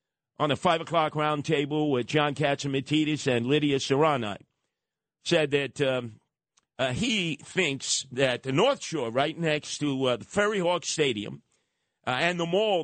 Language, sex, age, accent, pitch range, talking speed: English, male, 50-69, American, 145-190 Hz, 155 wpm